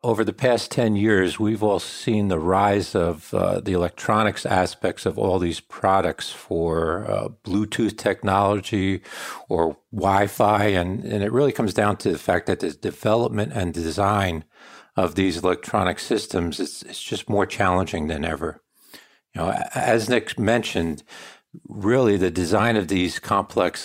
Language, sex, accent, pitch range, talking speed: English, male, American, 90-105 Hz, 155 wpm